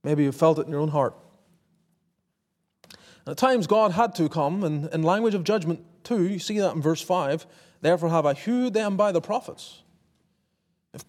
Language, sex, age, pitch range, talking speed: English, male, 30-49, 160-190 Hz, 190 wpm